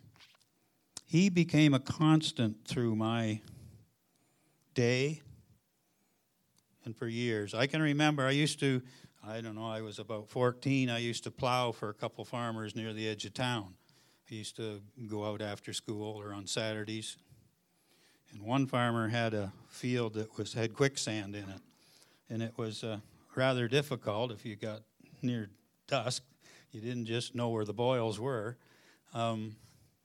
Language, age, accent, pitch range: English, 60-79, American, 110-135 Hz